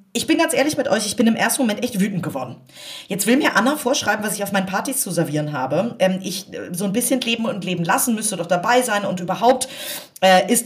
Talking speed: 235 wpm